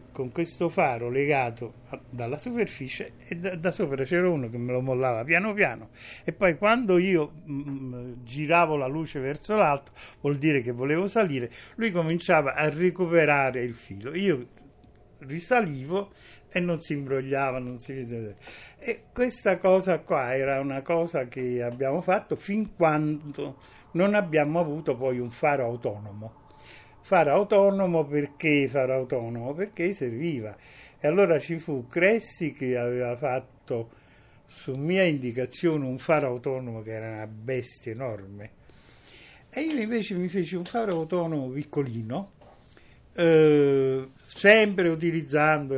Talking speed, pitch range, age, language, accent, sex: 140 wpm, 125-170 Hz, 60-79, Italian, native, male